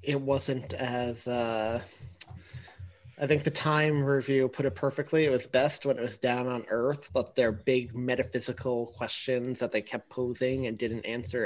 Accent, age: American, 30-49